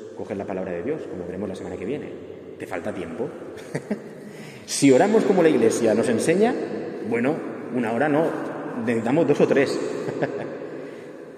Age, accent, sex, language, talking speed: 30-49, Spanish, male, Spanish, 165 wpm